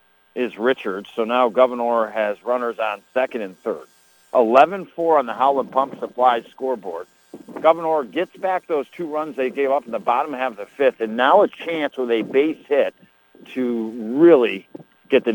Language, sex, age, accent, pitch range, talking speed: English, male, 60-79, American, 110-130 Hz, 175 wpm